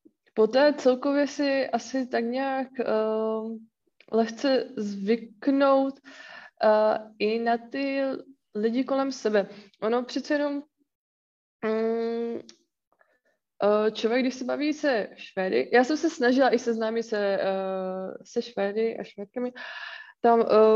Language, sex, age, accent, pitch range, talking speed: Czech, female, 20-39, native, 205-270 Hz, 115 wpm